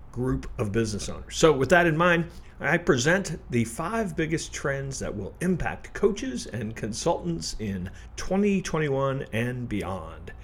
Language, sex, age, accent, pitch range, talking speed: English, male, 50-69, American, 110-150 Hz, 145 wpm